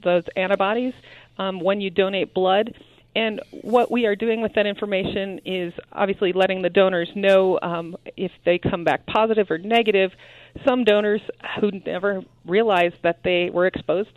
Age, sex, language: 40-59, female, English